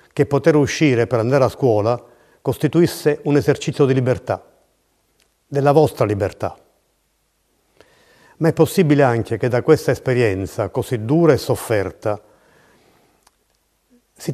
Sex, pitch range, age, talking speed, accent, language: male, 120-145 Hz, 50-69, 115 wpm, native, Italian